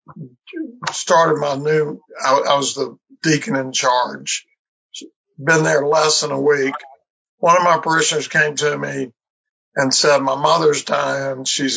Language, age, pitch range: English, 60-79, 135-170 Hz